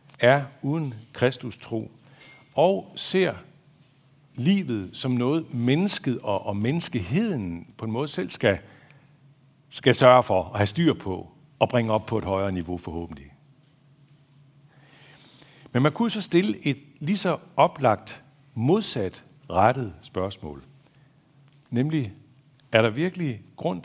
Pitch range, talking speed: 110-145 Hz, 125 wpm